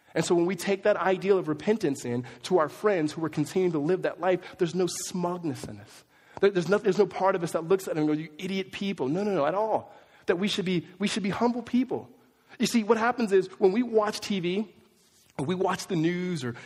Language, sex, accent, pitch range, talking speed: English, male, American, 130-190 Hz, 250 wpm